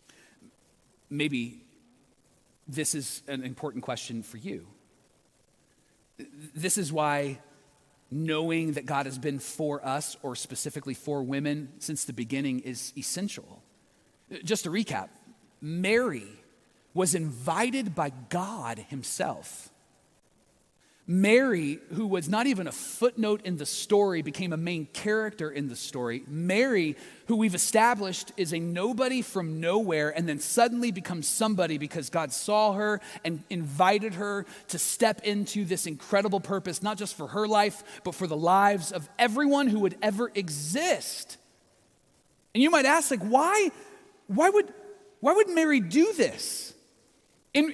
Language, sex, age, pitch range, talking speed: English, male, 30-49, 155-245 Hz, 135 wpm